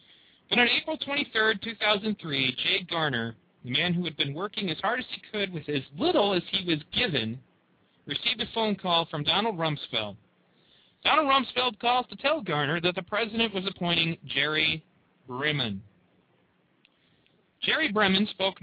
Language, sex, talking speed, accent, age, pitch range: English, male, 155 wpm, American, 40-59, 155-210 Hz